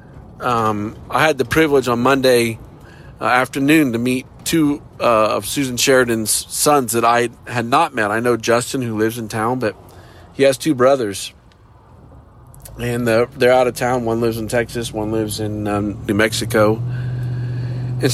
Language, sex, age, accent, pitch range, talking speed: English, male, 40-59, American, 115-135 Hz, 165 wpm